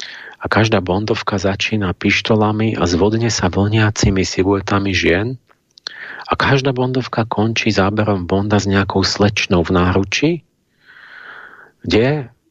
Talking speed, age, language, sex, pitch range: 110 wpm, 40-59, Slovak, male, 90-110 Hz